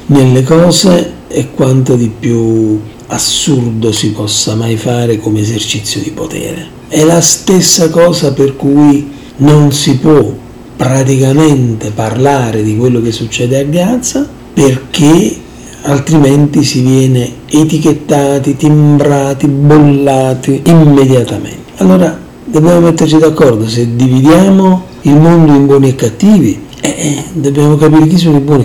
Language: Italian